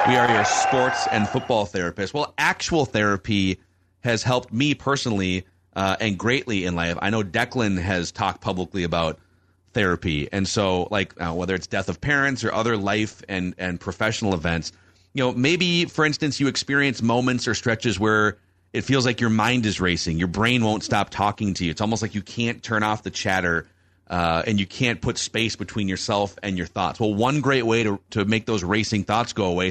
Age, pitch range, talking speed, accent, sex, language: 30-49, 95-125 Hz, 200 wpm, American, male, English